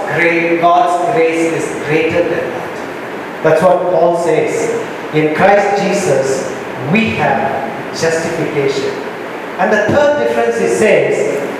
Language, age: Japanese, 40-59